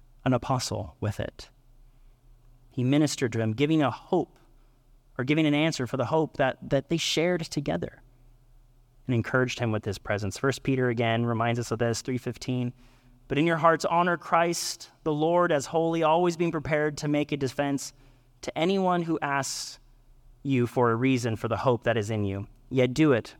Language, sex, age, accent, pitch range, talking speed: English, male, 30-49, American, 115-135 Hz, 185 wpm